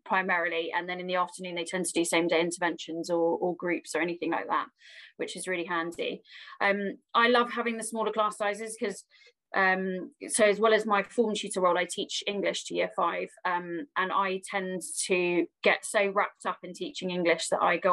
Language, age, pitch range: English, 20-39, 185-225 Hz